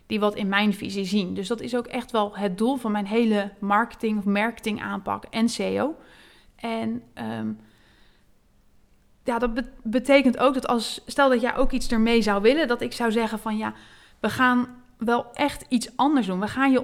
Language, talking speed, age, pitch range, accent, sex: Dutch, 190 wpm, 30-49, 205-245 Hz, Dutch, female